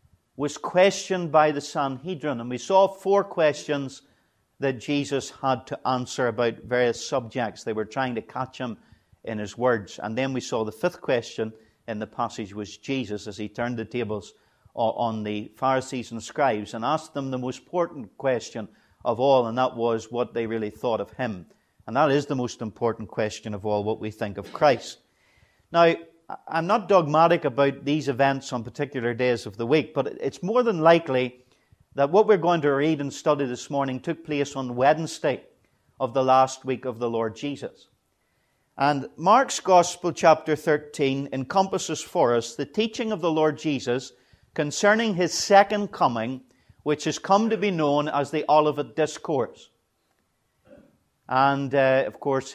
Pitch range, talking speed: 115-155 Hz, 175 wpm